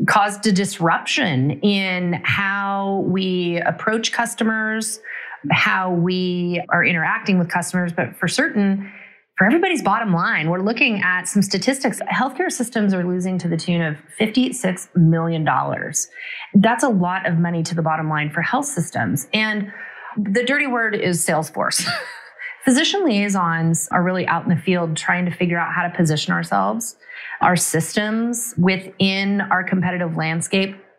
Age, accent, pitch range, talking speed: 30-49, American, 170-210 Hz, 145 wpm